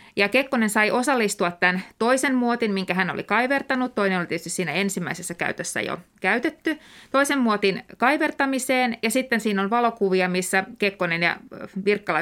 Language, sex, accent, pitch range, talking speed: Finnish, female, native, 185-235 Hz, 150 wpm